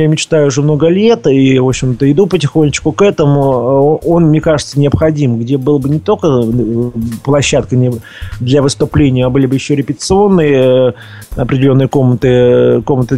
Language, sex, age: Russian, male, 20-39